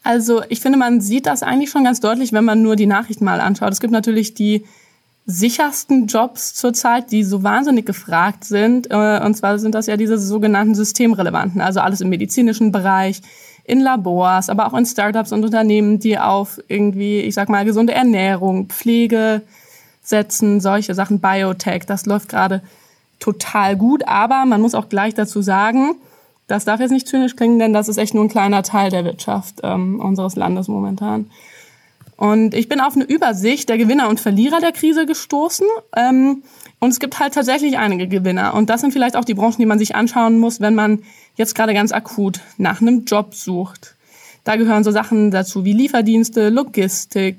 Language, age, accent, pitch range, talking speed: German, 20-39, German, 200-240 Hz, 185 wpm